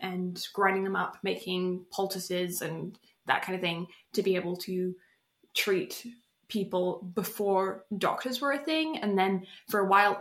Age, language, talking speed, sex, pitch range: 20-39, English, 160 wpm, female, 190-225 Hz